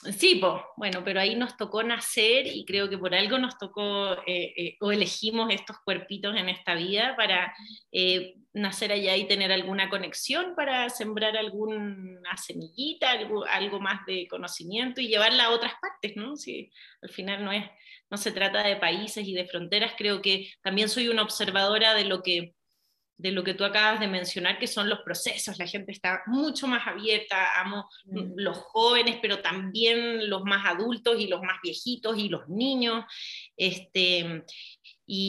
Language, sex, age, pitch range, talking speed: Spanish, female, 30-49, 180-215 Hz, 170 wpm